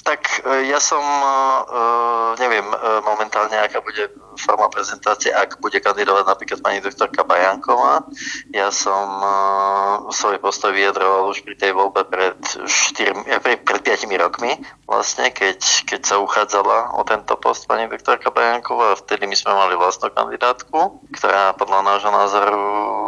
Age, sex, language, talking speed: 20-39, male, Slovak, 135 wpm